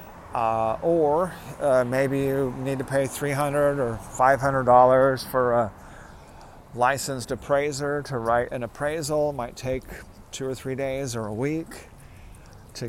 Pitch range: 115-140 Hz